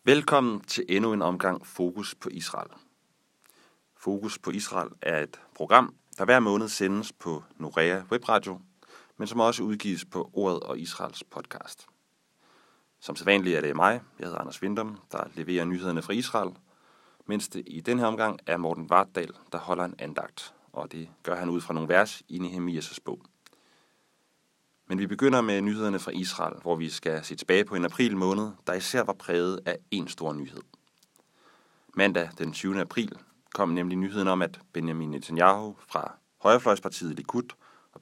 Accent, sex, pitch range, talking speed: Danish, male, 85-100 Hz, 170 wpm